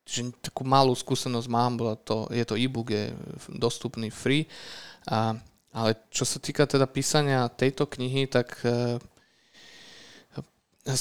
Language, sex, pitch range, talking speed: Slovak, male, 115-135 Hz, 130 wpm